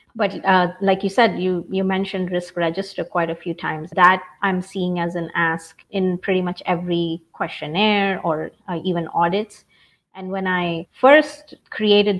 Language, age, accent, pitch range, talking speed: English, 30-49, Indian, 170-195 Hz, 165 wpm